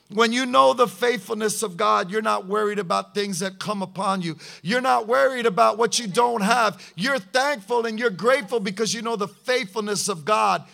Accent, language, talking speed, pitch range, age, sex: American, English, 200 wpm, 185-245 Hz, 40-59, male